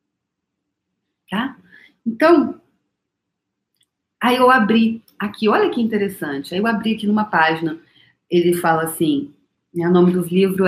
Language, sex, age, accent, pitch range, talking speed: Portuguese, female, 40-59, Brazilian, 180-250 Hz, 130 wpm